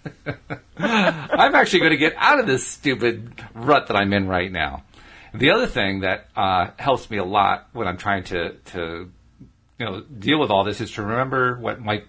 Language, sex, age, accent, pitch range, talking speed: English, male, 40-59, American, 100-135 Hz, 200 wpm